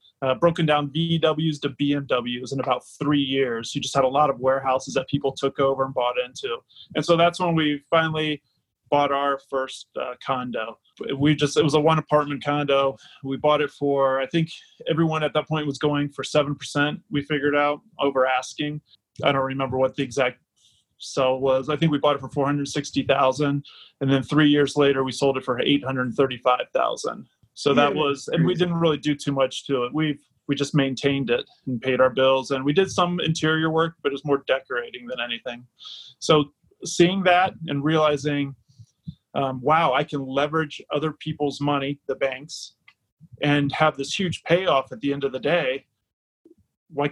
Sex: male